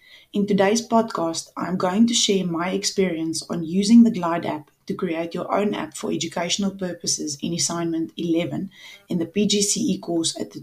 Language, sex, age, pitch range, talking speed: English, female, 20-39, 170-210 Hz, 180 wpm